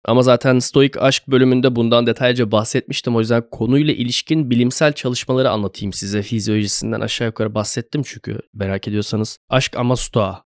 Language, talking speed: Turkish, 155 wpm